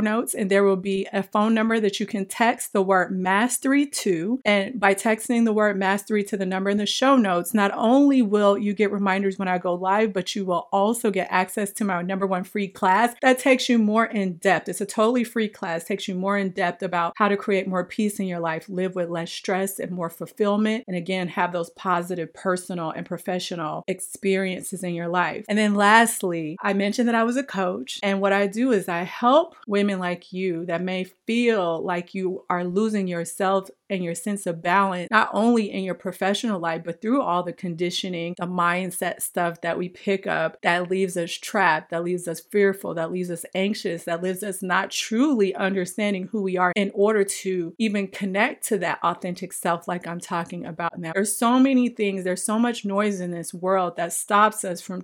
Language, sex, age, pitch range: English, female, 40-59, 180-210 Hz